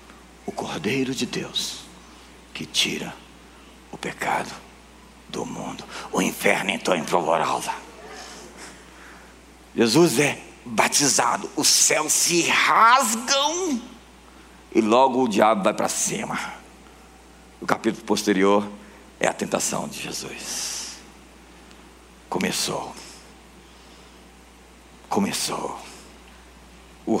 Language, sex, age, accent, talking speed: Portuguese, male, 60-79, Brazilian, 90 wpm